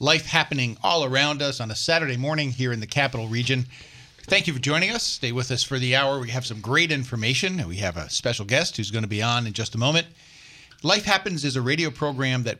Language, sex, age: English, male, 50-69